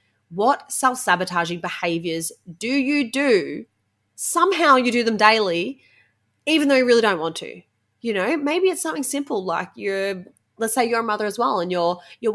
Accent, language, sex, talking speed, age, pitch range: Australian, English, female, 175 wpm, 20-39, 175-230 Hz